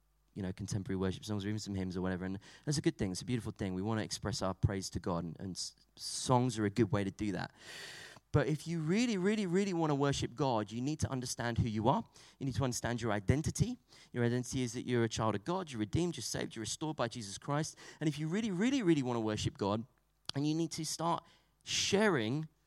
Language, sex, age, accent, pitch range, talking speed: English, male, 30-49, British, 120-170 Hz, 250 wpm